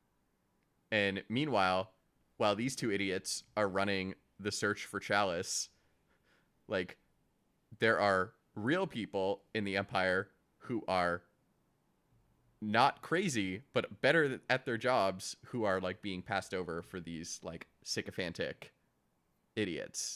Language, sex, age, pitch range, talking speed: English, male, 20-39, 90-110 Hz, 120 wpm